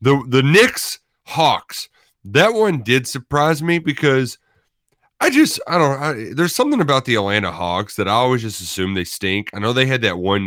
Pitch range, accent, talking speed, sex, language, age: 105-145 Hz, American, 195 wpm, male, English, 30-49